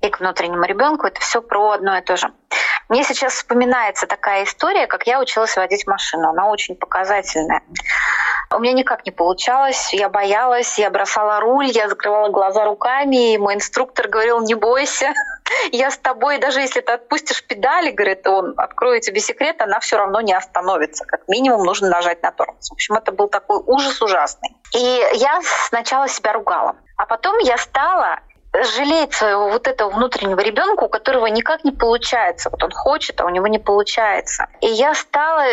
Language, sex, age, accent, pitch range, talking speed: Russian, female, 20-39, native, 205-275 Hz, 180 wpm